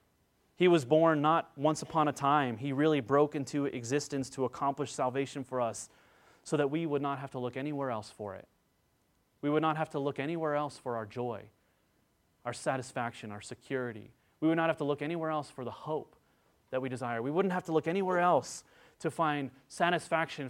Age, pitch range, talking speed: 30-49, 130-155 Hz, 200 wpm